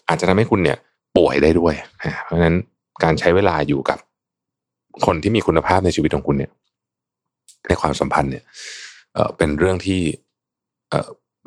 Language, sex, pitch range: Thai, male, 75-105 Hz